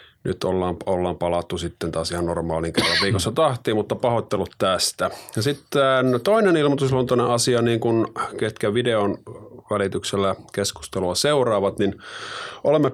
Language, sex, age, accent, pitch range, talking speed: Finnish, male, 30-49, native, 90-115 Hz, 125 wpm